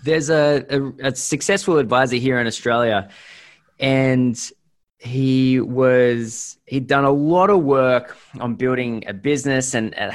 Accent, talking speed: Australian, 140 wpm